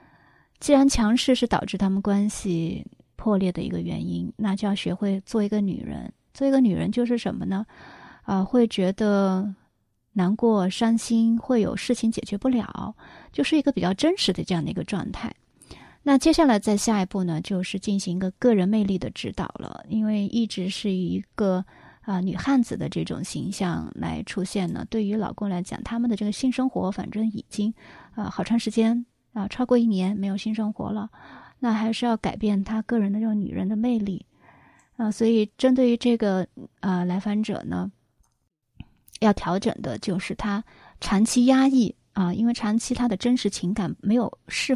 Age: 30-49